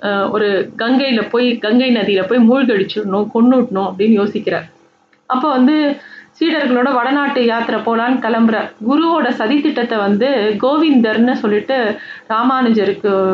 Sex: female